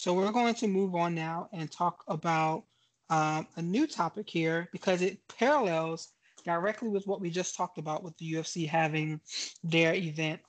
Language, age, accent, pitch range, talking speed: English, 20-39, American, 165-195 Hz, 175 wpm